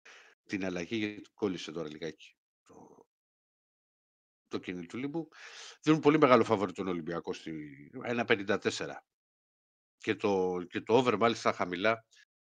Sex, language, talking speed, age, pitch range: male, Greek, 120 wpm, 60-79, 95-135 Hz